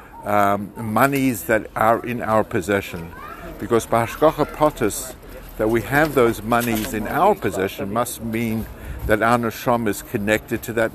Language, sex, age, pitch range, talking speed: English, male, 60-79, 105-135 Hz, 150 wpm